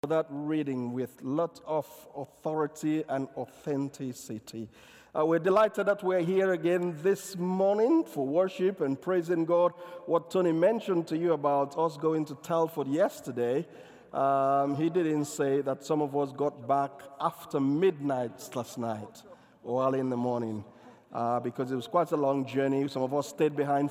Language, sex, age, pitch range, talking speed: English, male, 50-69, 130-165 Hz, 165 wpm